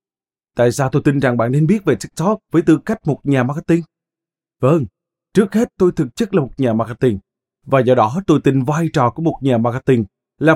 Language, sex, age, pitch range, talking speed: Vietnamese, male, 20-39, 120-165 Hz, 215 wpm